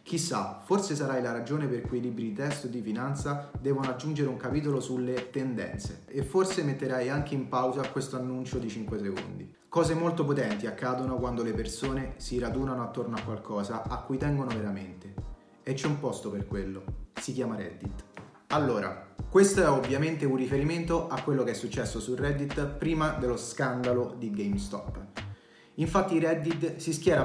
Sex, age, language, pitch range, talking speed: male, 30-49, Italian, 115-150 Hz, 170 wpm